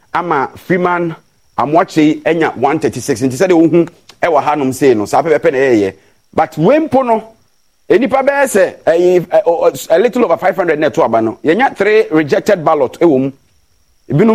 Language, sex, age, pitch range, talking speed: English, male, 40-59, 145-205 Hz, 165 wpm